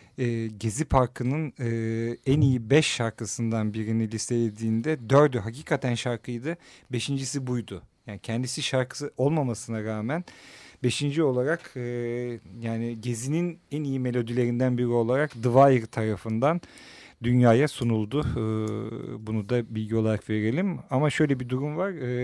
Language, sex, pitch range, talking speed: Turkish, male, 110-130 Hz, 115 wpm